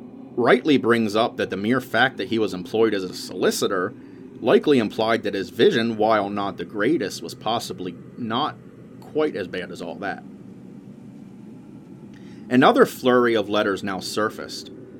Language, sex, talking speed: English, male, 150 wpm